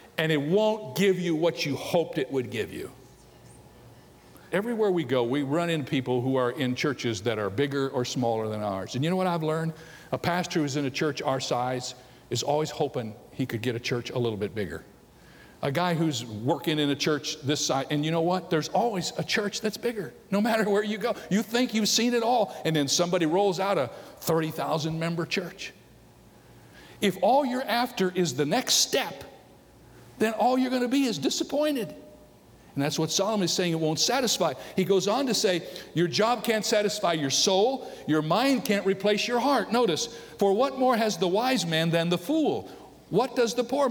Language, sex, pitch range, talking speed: English, male, 140-205 Hz, 210 wpm